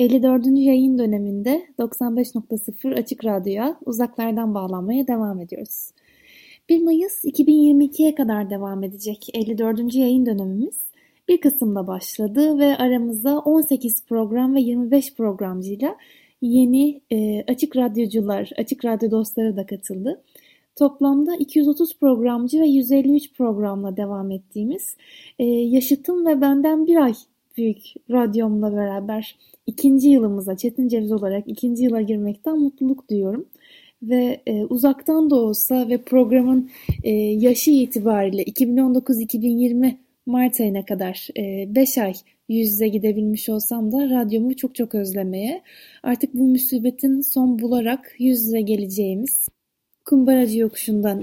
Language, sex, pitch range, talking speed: Turkish, female, 215-270 Hz, 120 wpm